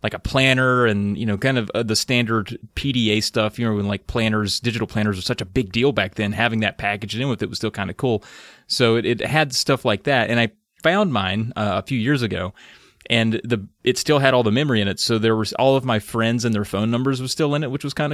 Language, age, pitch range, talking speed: English, 30-49, 105-130 Hz, 270 wpm